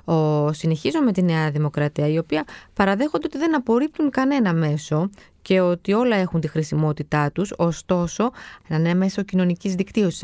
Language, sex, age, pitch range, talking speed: Greek, female, 20-39, 165-230 Hz, 160 wpm